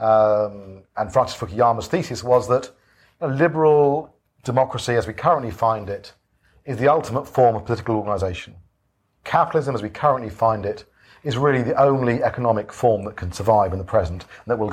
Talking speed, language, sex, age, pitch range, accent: 175 wpm, English, male, 40-59, 105-140 Hz, British